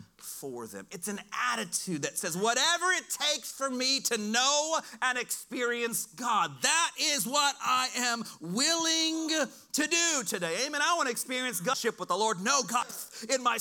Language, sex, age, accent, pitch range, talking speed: English, male, 40-59, American, 210-275 Hz, 175 wpm